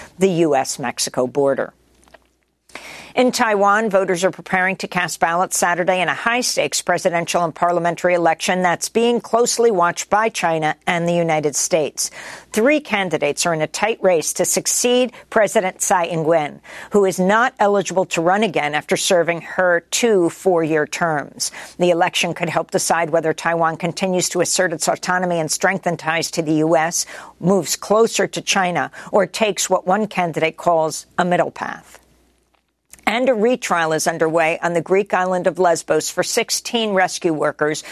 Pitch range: 165-200 Hz